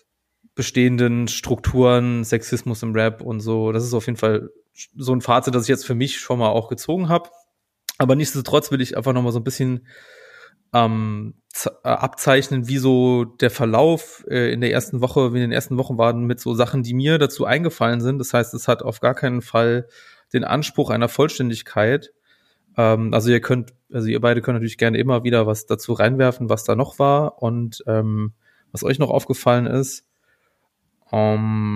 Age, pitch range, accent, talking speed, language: 30-49, 115-140 Hz, German, 185 wpm, German